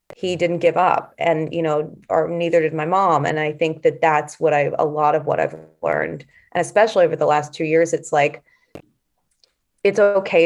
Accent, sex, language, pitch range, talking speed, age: American, female, English, 150-175 Hz, 205 wpm, 30-49